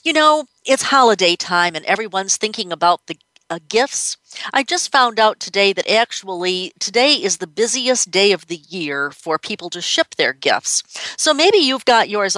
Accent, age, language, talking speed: American, 50-69, English, 185 wpm